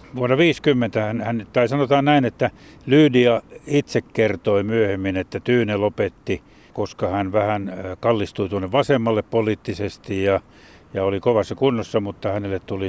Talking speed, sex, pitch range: 130 wpm, male, 100-120 Hz